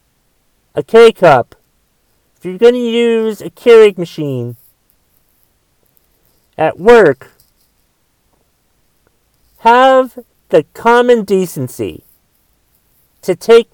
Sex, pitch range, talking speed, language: male, 165-225 Hz, 80 wpm, English